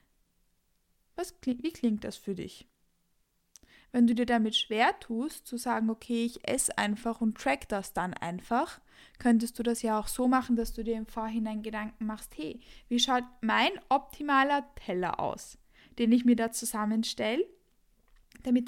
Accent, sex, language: German, female, German